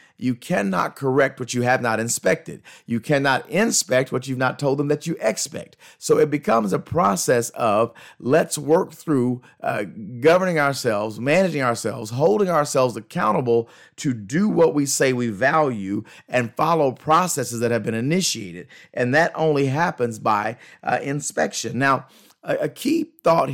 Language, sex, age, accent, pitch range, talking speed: English, male, 40-59, American, 120-155 Hz, 160 wpm